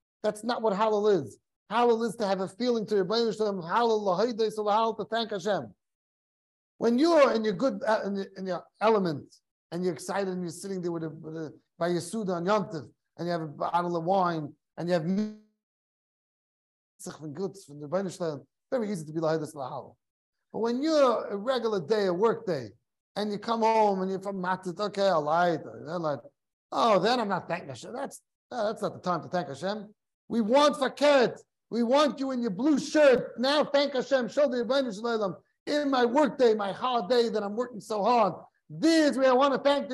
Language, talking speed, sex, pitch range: English, 180 wpm, male, 185-245 Hz